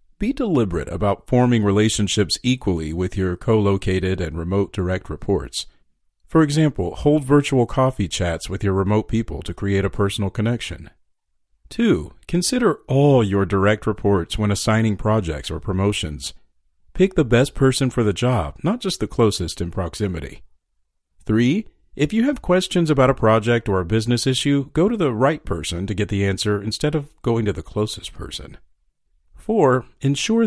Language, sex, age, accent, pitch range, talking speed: English, male, 40-59, American, 90-130 Hz, 160 wpm